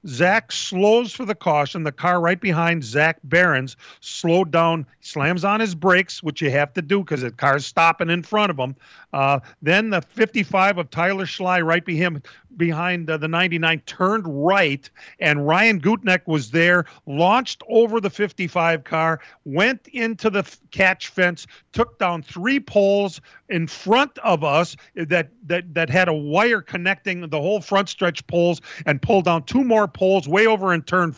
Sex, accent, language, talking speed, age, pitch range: male, American, English, 175 wpm, 50-69, 160-210 Hz